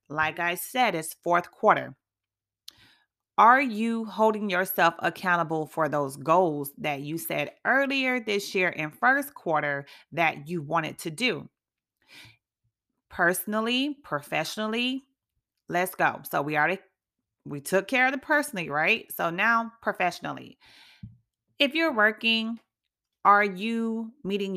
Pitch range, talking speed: 160-220 Hz, 125 wpm